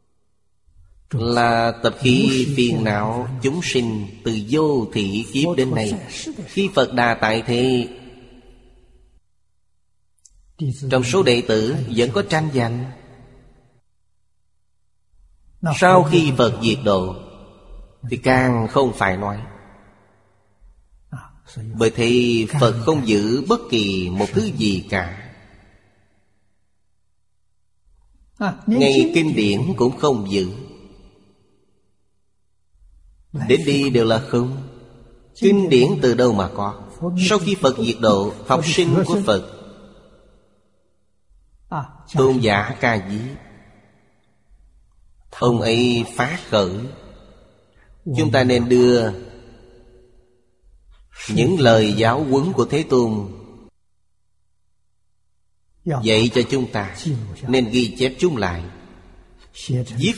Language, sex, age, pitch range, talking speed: Vietnamese, male, 30-49, 100-130 Hz, 100 wpm